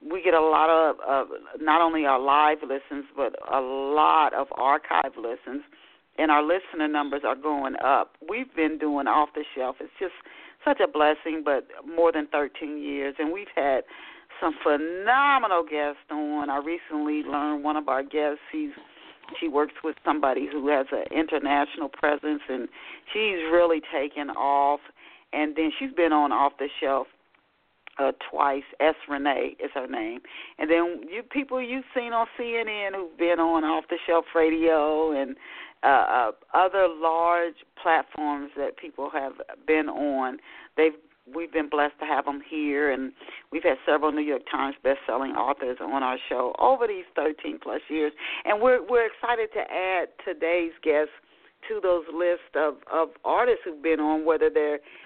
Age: 40-59